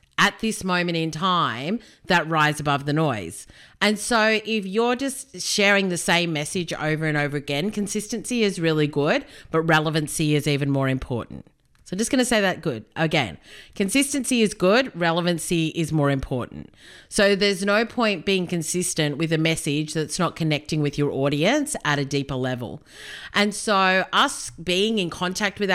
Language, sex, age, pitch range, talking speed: English, female, 30-49, 155-195 Hz, 175 wpm